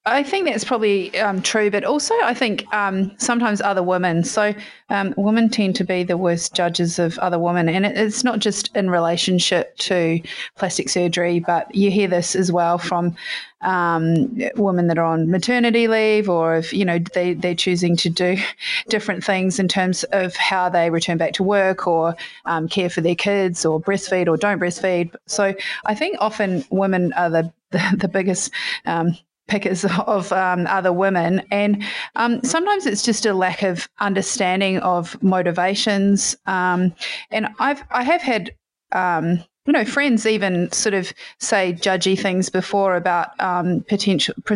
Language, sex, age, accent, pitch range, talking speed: English, female, 30-49, Australian, 175-210 Hz, 170 wpm